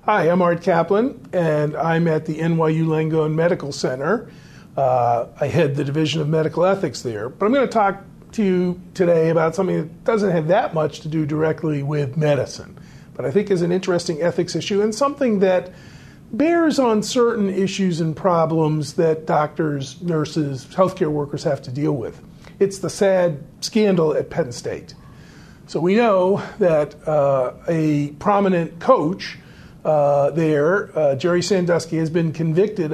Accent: American